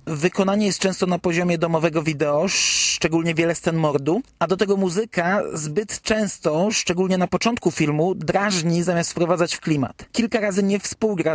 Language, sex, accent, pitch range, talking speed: Polish, male, native, 160-195 Hz, 160 wpm